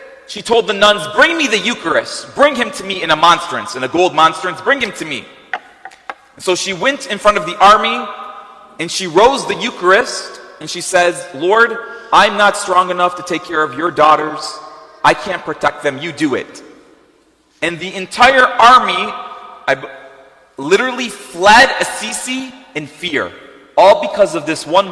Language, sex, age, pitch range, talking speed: English, male, 30-49, 130-210 Hz, 170 wpm